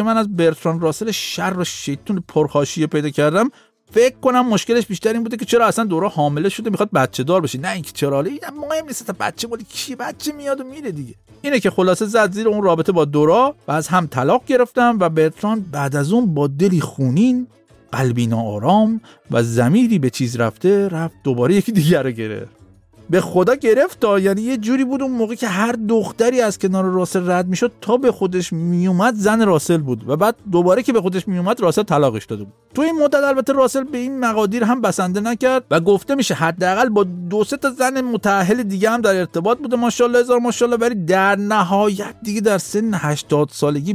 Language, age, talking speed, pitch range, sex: Persian, 50-69, 200 wpm, 155-230 Hz, male